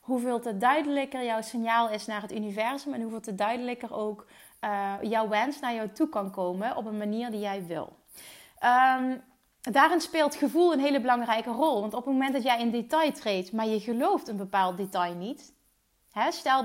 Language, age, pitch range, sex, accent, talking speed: Dutch, 30-49, 215-255 Hz, female, Dutch, 185 wpm